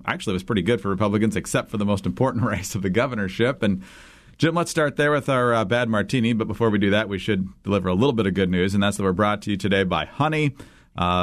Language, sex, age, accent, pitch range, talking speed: English, male, 40-59, American, 100-130 Hz, 275 wpm